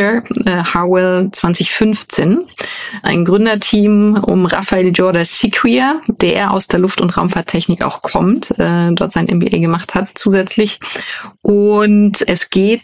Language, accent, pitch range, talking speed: German, German, 170-200 Hz, 125 wpm